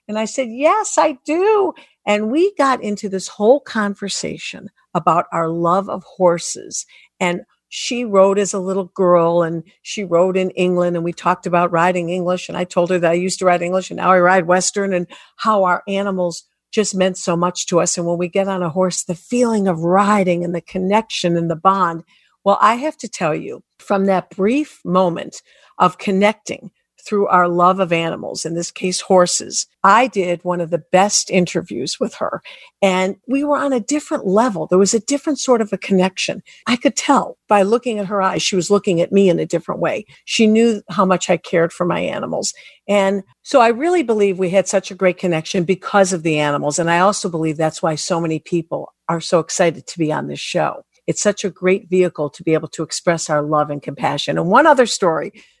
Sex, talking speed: female, 215 wpm